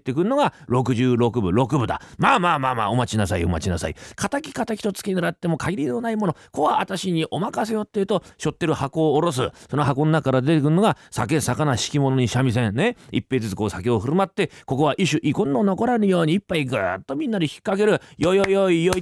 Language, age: Japanese, 40-59